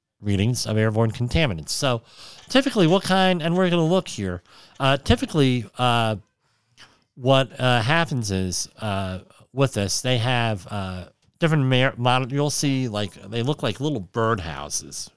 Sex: male